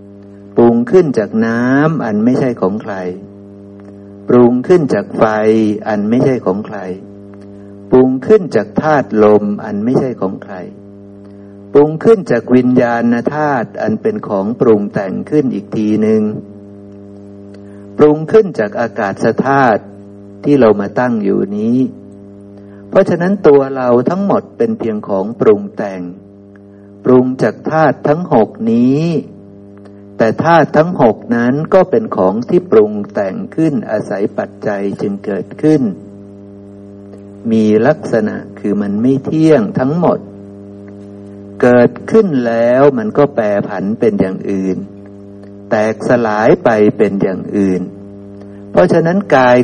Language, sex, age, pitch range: Thai, male, 60-79, 100-155 Hz